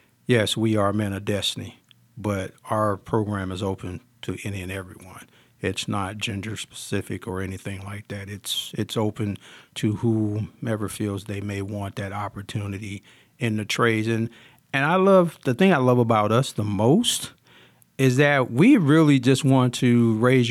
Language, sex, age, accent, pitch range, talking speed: English, male, 50-69, American, 105-120 Hz, 165 wpm